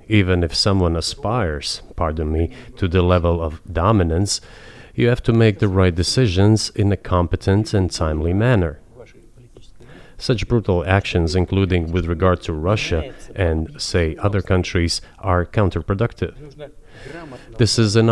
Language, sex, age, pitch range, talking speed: English, male, 40-59, 90-115 Hz, 135 wpm